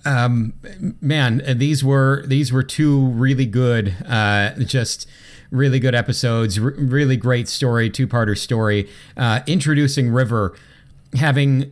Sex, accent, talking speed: male, American, 130 wpm